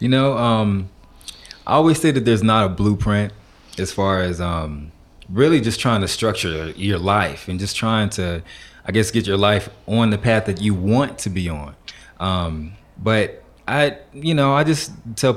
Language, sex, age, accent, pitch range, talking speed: English, male, 20-39, American, 95-110 Hz, 185 wpm